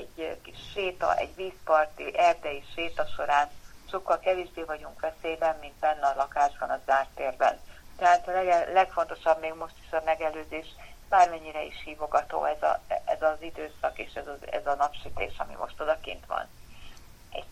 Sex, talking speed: female, 145 wpm